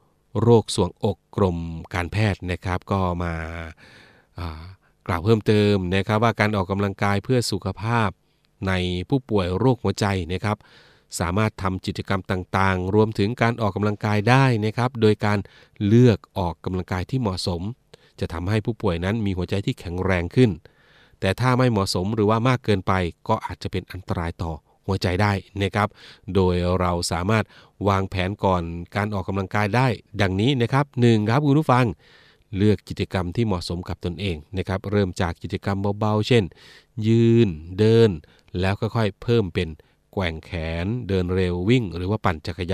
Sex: male